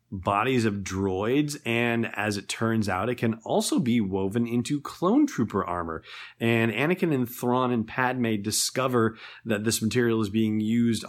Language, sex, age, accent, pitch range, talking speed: English, male, 30-49, American, 100-120 Hz, 160 wpm